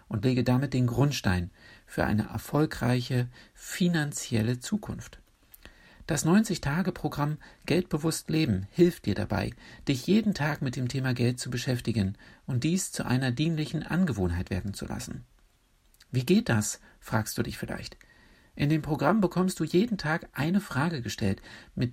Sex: male